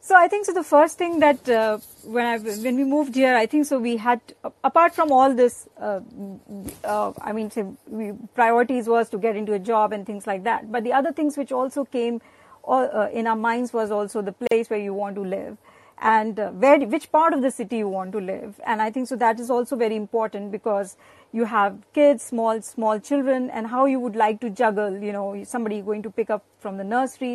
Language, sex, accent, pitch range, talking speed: English, female, Indian, 215-255 Hz, 235 wpm